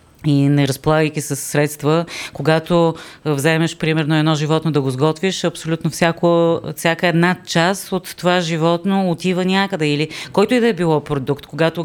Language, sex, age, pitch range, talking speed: Bulgarian, female, 30-49, 155-180 Hz, 160 wpm